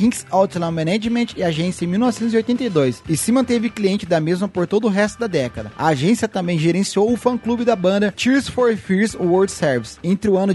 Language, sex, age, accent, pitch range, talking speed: English, male, 20-39, Brazilian, 160-220 Hz, 200 wpm